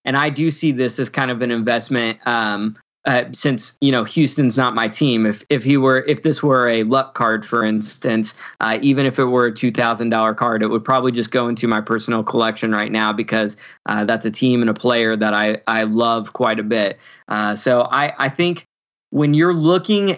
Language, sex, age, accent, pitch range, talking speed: English, male, 20-39, American, 110-130 Hz, 225 wpm